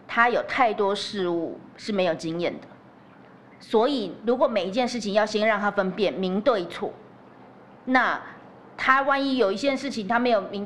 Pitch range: 185-235 Hz